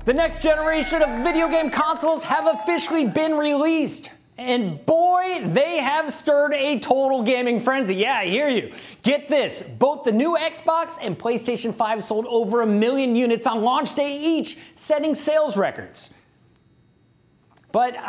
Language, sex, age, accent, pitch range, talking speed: English, male, 30-49, American, 220-325 Hz, 155 wpm